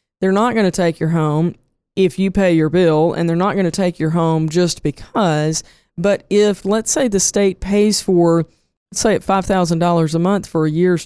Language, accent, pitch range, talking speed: English, American, 165-190 Hz, 205 wpm